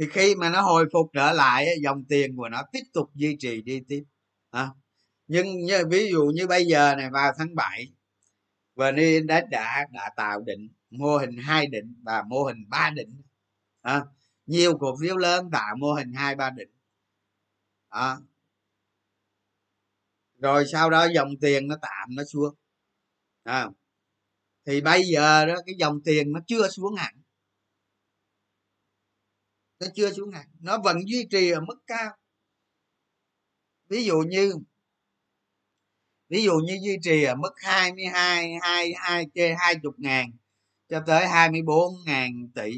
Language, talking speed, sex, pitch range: Vietnamese, 150 wpm, male, 110-170 Hz